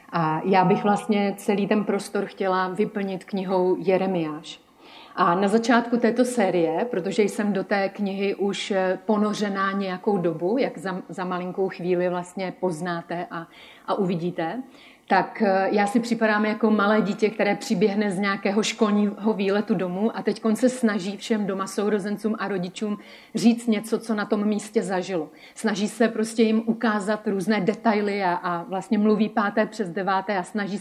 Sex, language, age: female, Czech, 30-49